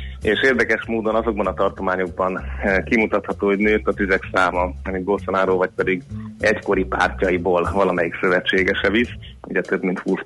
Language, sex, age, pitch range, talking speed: Hungarian, male, 30-49, 90-110 Hz, 145 wpm